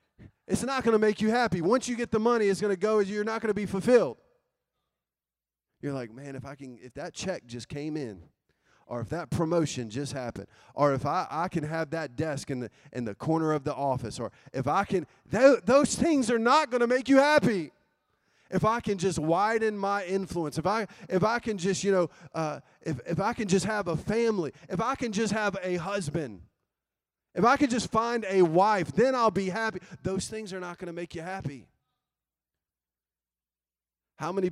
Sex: male